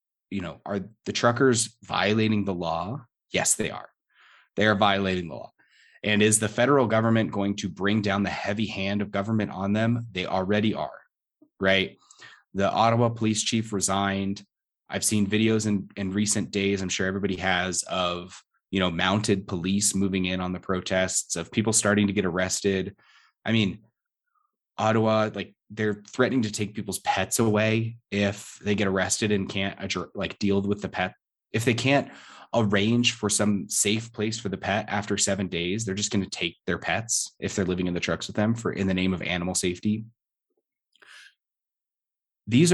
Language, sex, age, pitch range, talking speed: English, male, 30-49, 95-115 Hz, 180 wpm